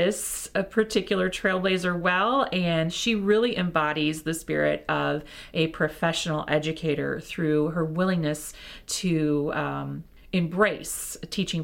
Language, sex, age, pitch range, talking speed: English, female, 40-59, 165-220 Hz, 105 wpm